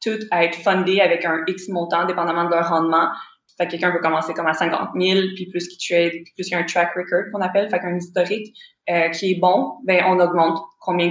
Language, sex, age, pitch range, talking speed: French, female, 20-39, 175-210 Hz, 245 wpm